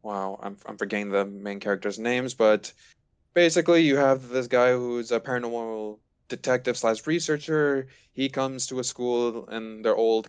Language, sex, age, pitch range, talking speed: English, male, 20-39, 105-125 Hz, 165 wpm